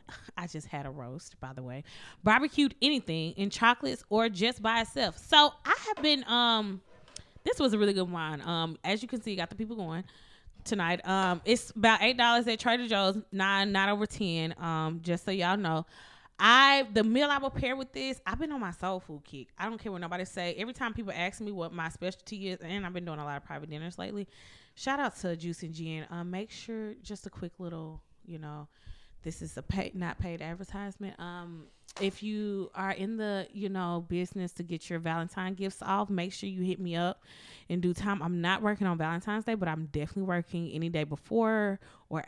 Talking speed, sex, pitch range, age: 220 wpm, female, 165-215 Hz, 20-39